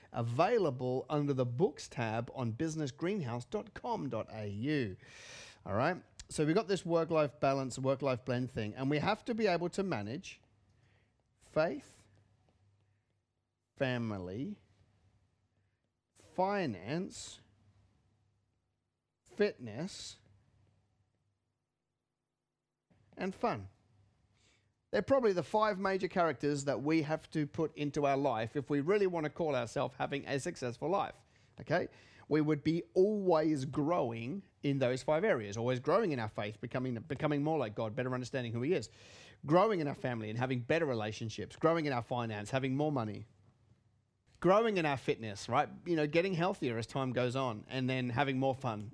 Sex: male